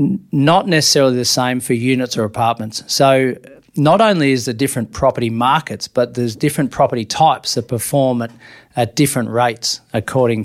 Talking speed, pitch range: 160 wpm, 115-135 Hz